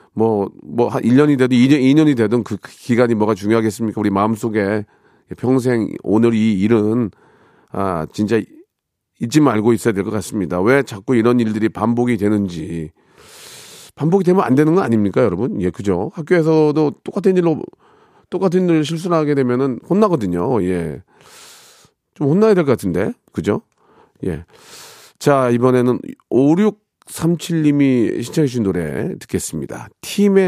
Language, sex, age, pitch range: Korean, male, 40-59, 100-145 Hz